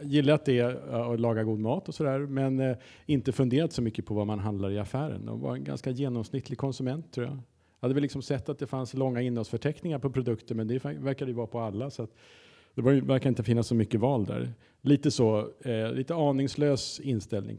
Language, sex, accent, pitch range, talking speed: Swedish, male, Norwegian, 105-130 Hz, 215 wpm